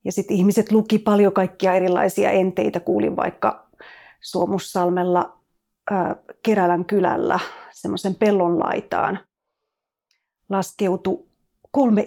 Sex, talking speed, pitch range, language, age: female, 95 wpm, 185-225 Hz, Finnish, 30-49